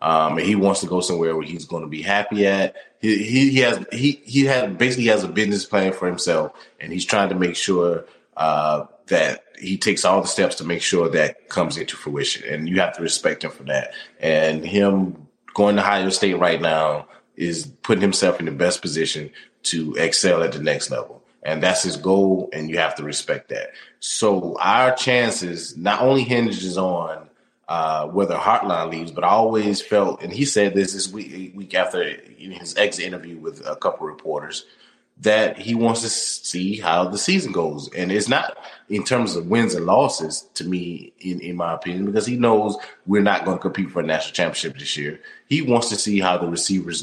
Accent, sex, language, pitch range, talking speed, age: American, male, English, 85-105 Hz, 210 wpm, 30-49